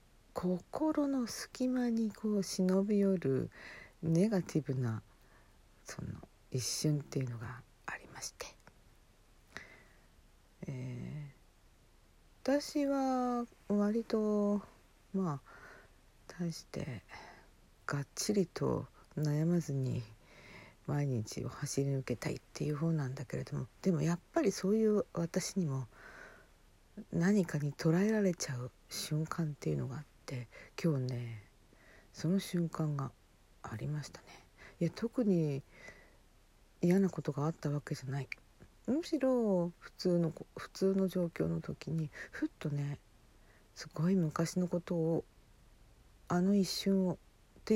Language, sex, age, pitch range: Japanese, female, 50-69, 125-195 Hz